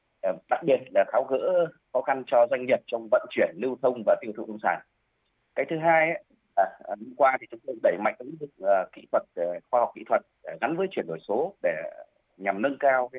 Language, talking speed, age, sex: Vietnamese, 225 wpm, 30-49, male